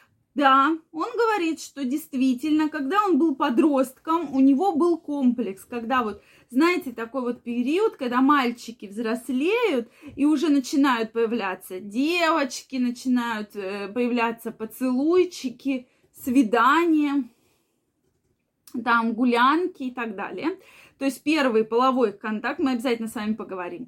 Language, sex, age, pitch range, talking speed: Russian, female, 20-39, 245-330 Hz, 115 wpm